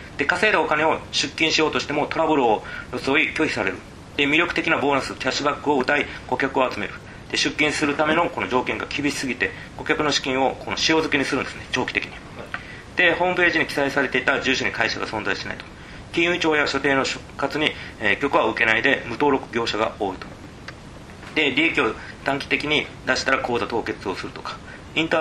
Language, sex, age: Japanese, male, 40-59